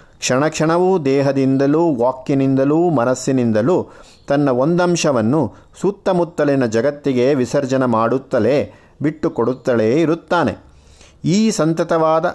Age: 50-69